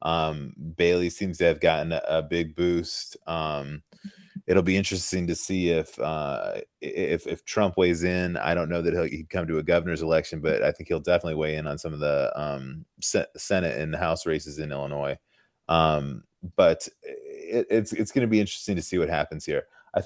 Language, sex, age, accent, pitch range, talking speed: English, male, 30-49, American, 80-100 Hz, 205 wpm